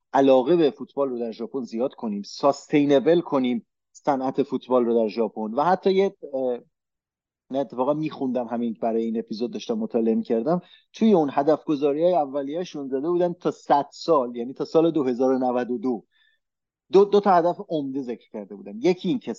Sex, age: male, 30-49